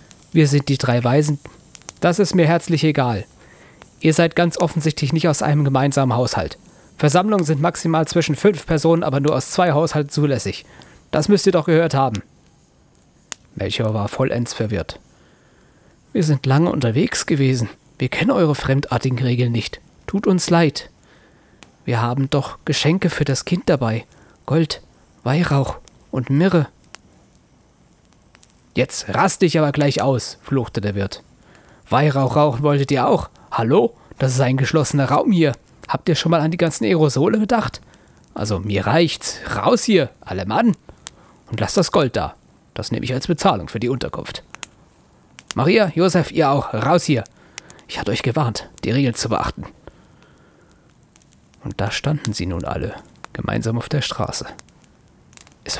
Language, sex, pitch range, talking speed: German, male, 120-165 Hz, 155 wpm